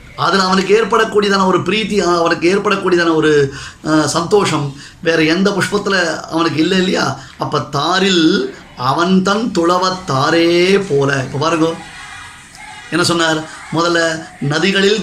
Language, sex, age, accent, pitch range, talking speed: Tamil, male, 30-49, native, 155-200 Hz, 50 wpm